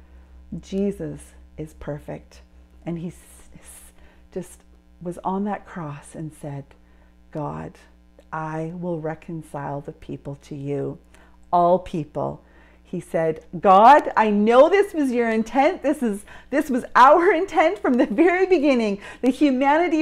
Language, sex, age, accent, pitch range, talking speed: English, female, 40-59, American, 185-305 Hz, 130 wpm